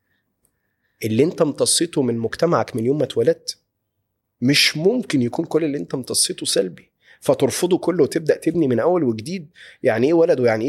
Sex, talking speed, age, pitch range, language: male, 155 wpm, 30-49, 115-155 Hz, Arabic